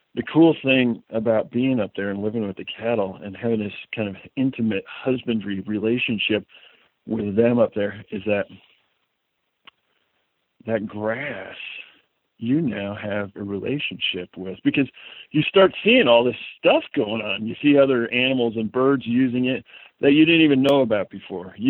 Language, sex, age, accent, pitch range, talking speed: English, male, 50-69, American, 105-130 Hz, 160 wpm